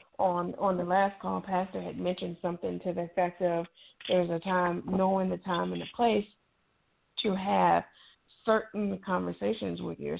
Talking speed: 165 wpm